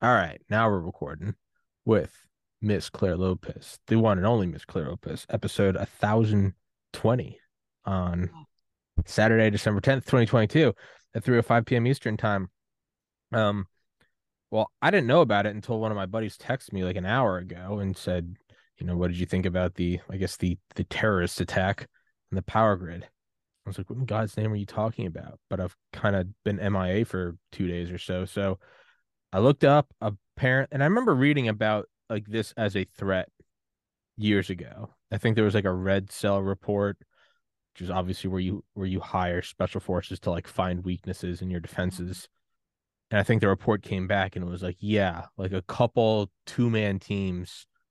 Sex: male